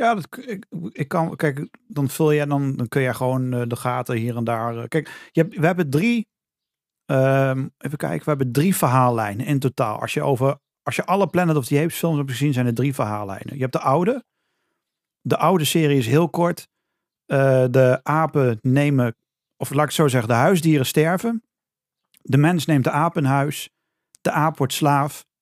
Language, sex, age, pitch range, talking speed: Dutch, male, 40-59, 130-160 Hz, 210 wpm